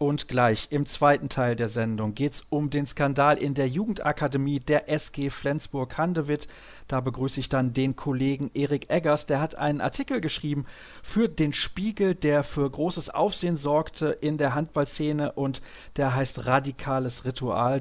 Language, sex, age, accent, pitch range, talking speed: German, male, 40-59, German, 125-155 Hz, 160 wpm